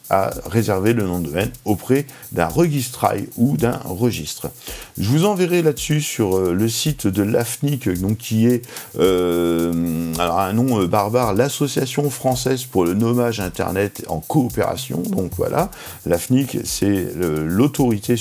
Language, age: French, 50-69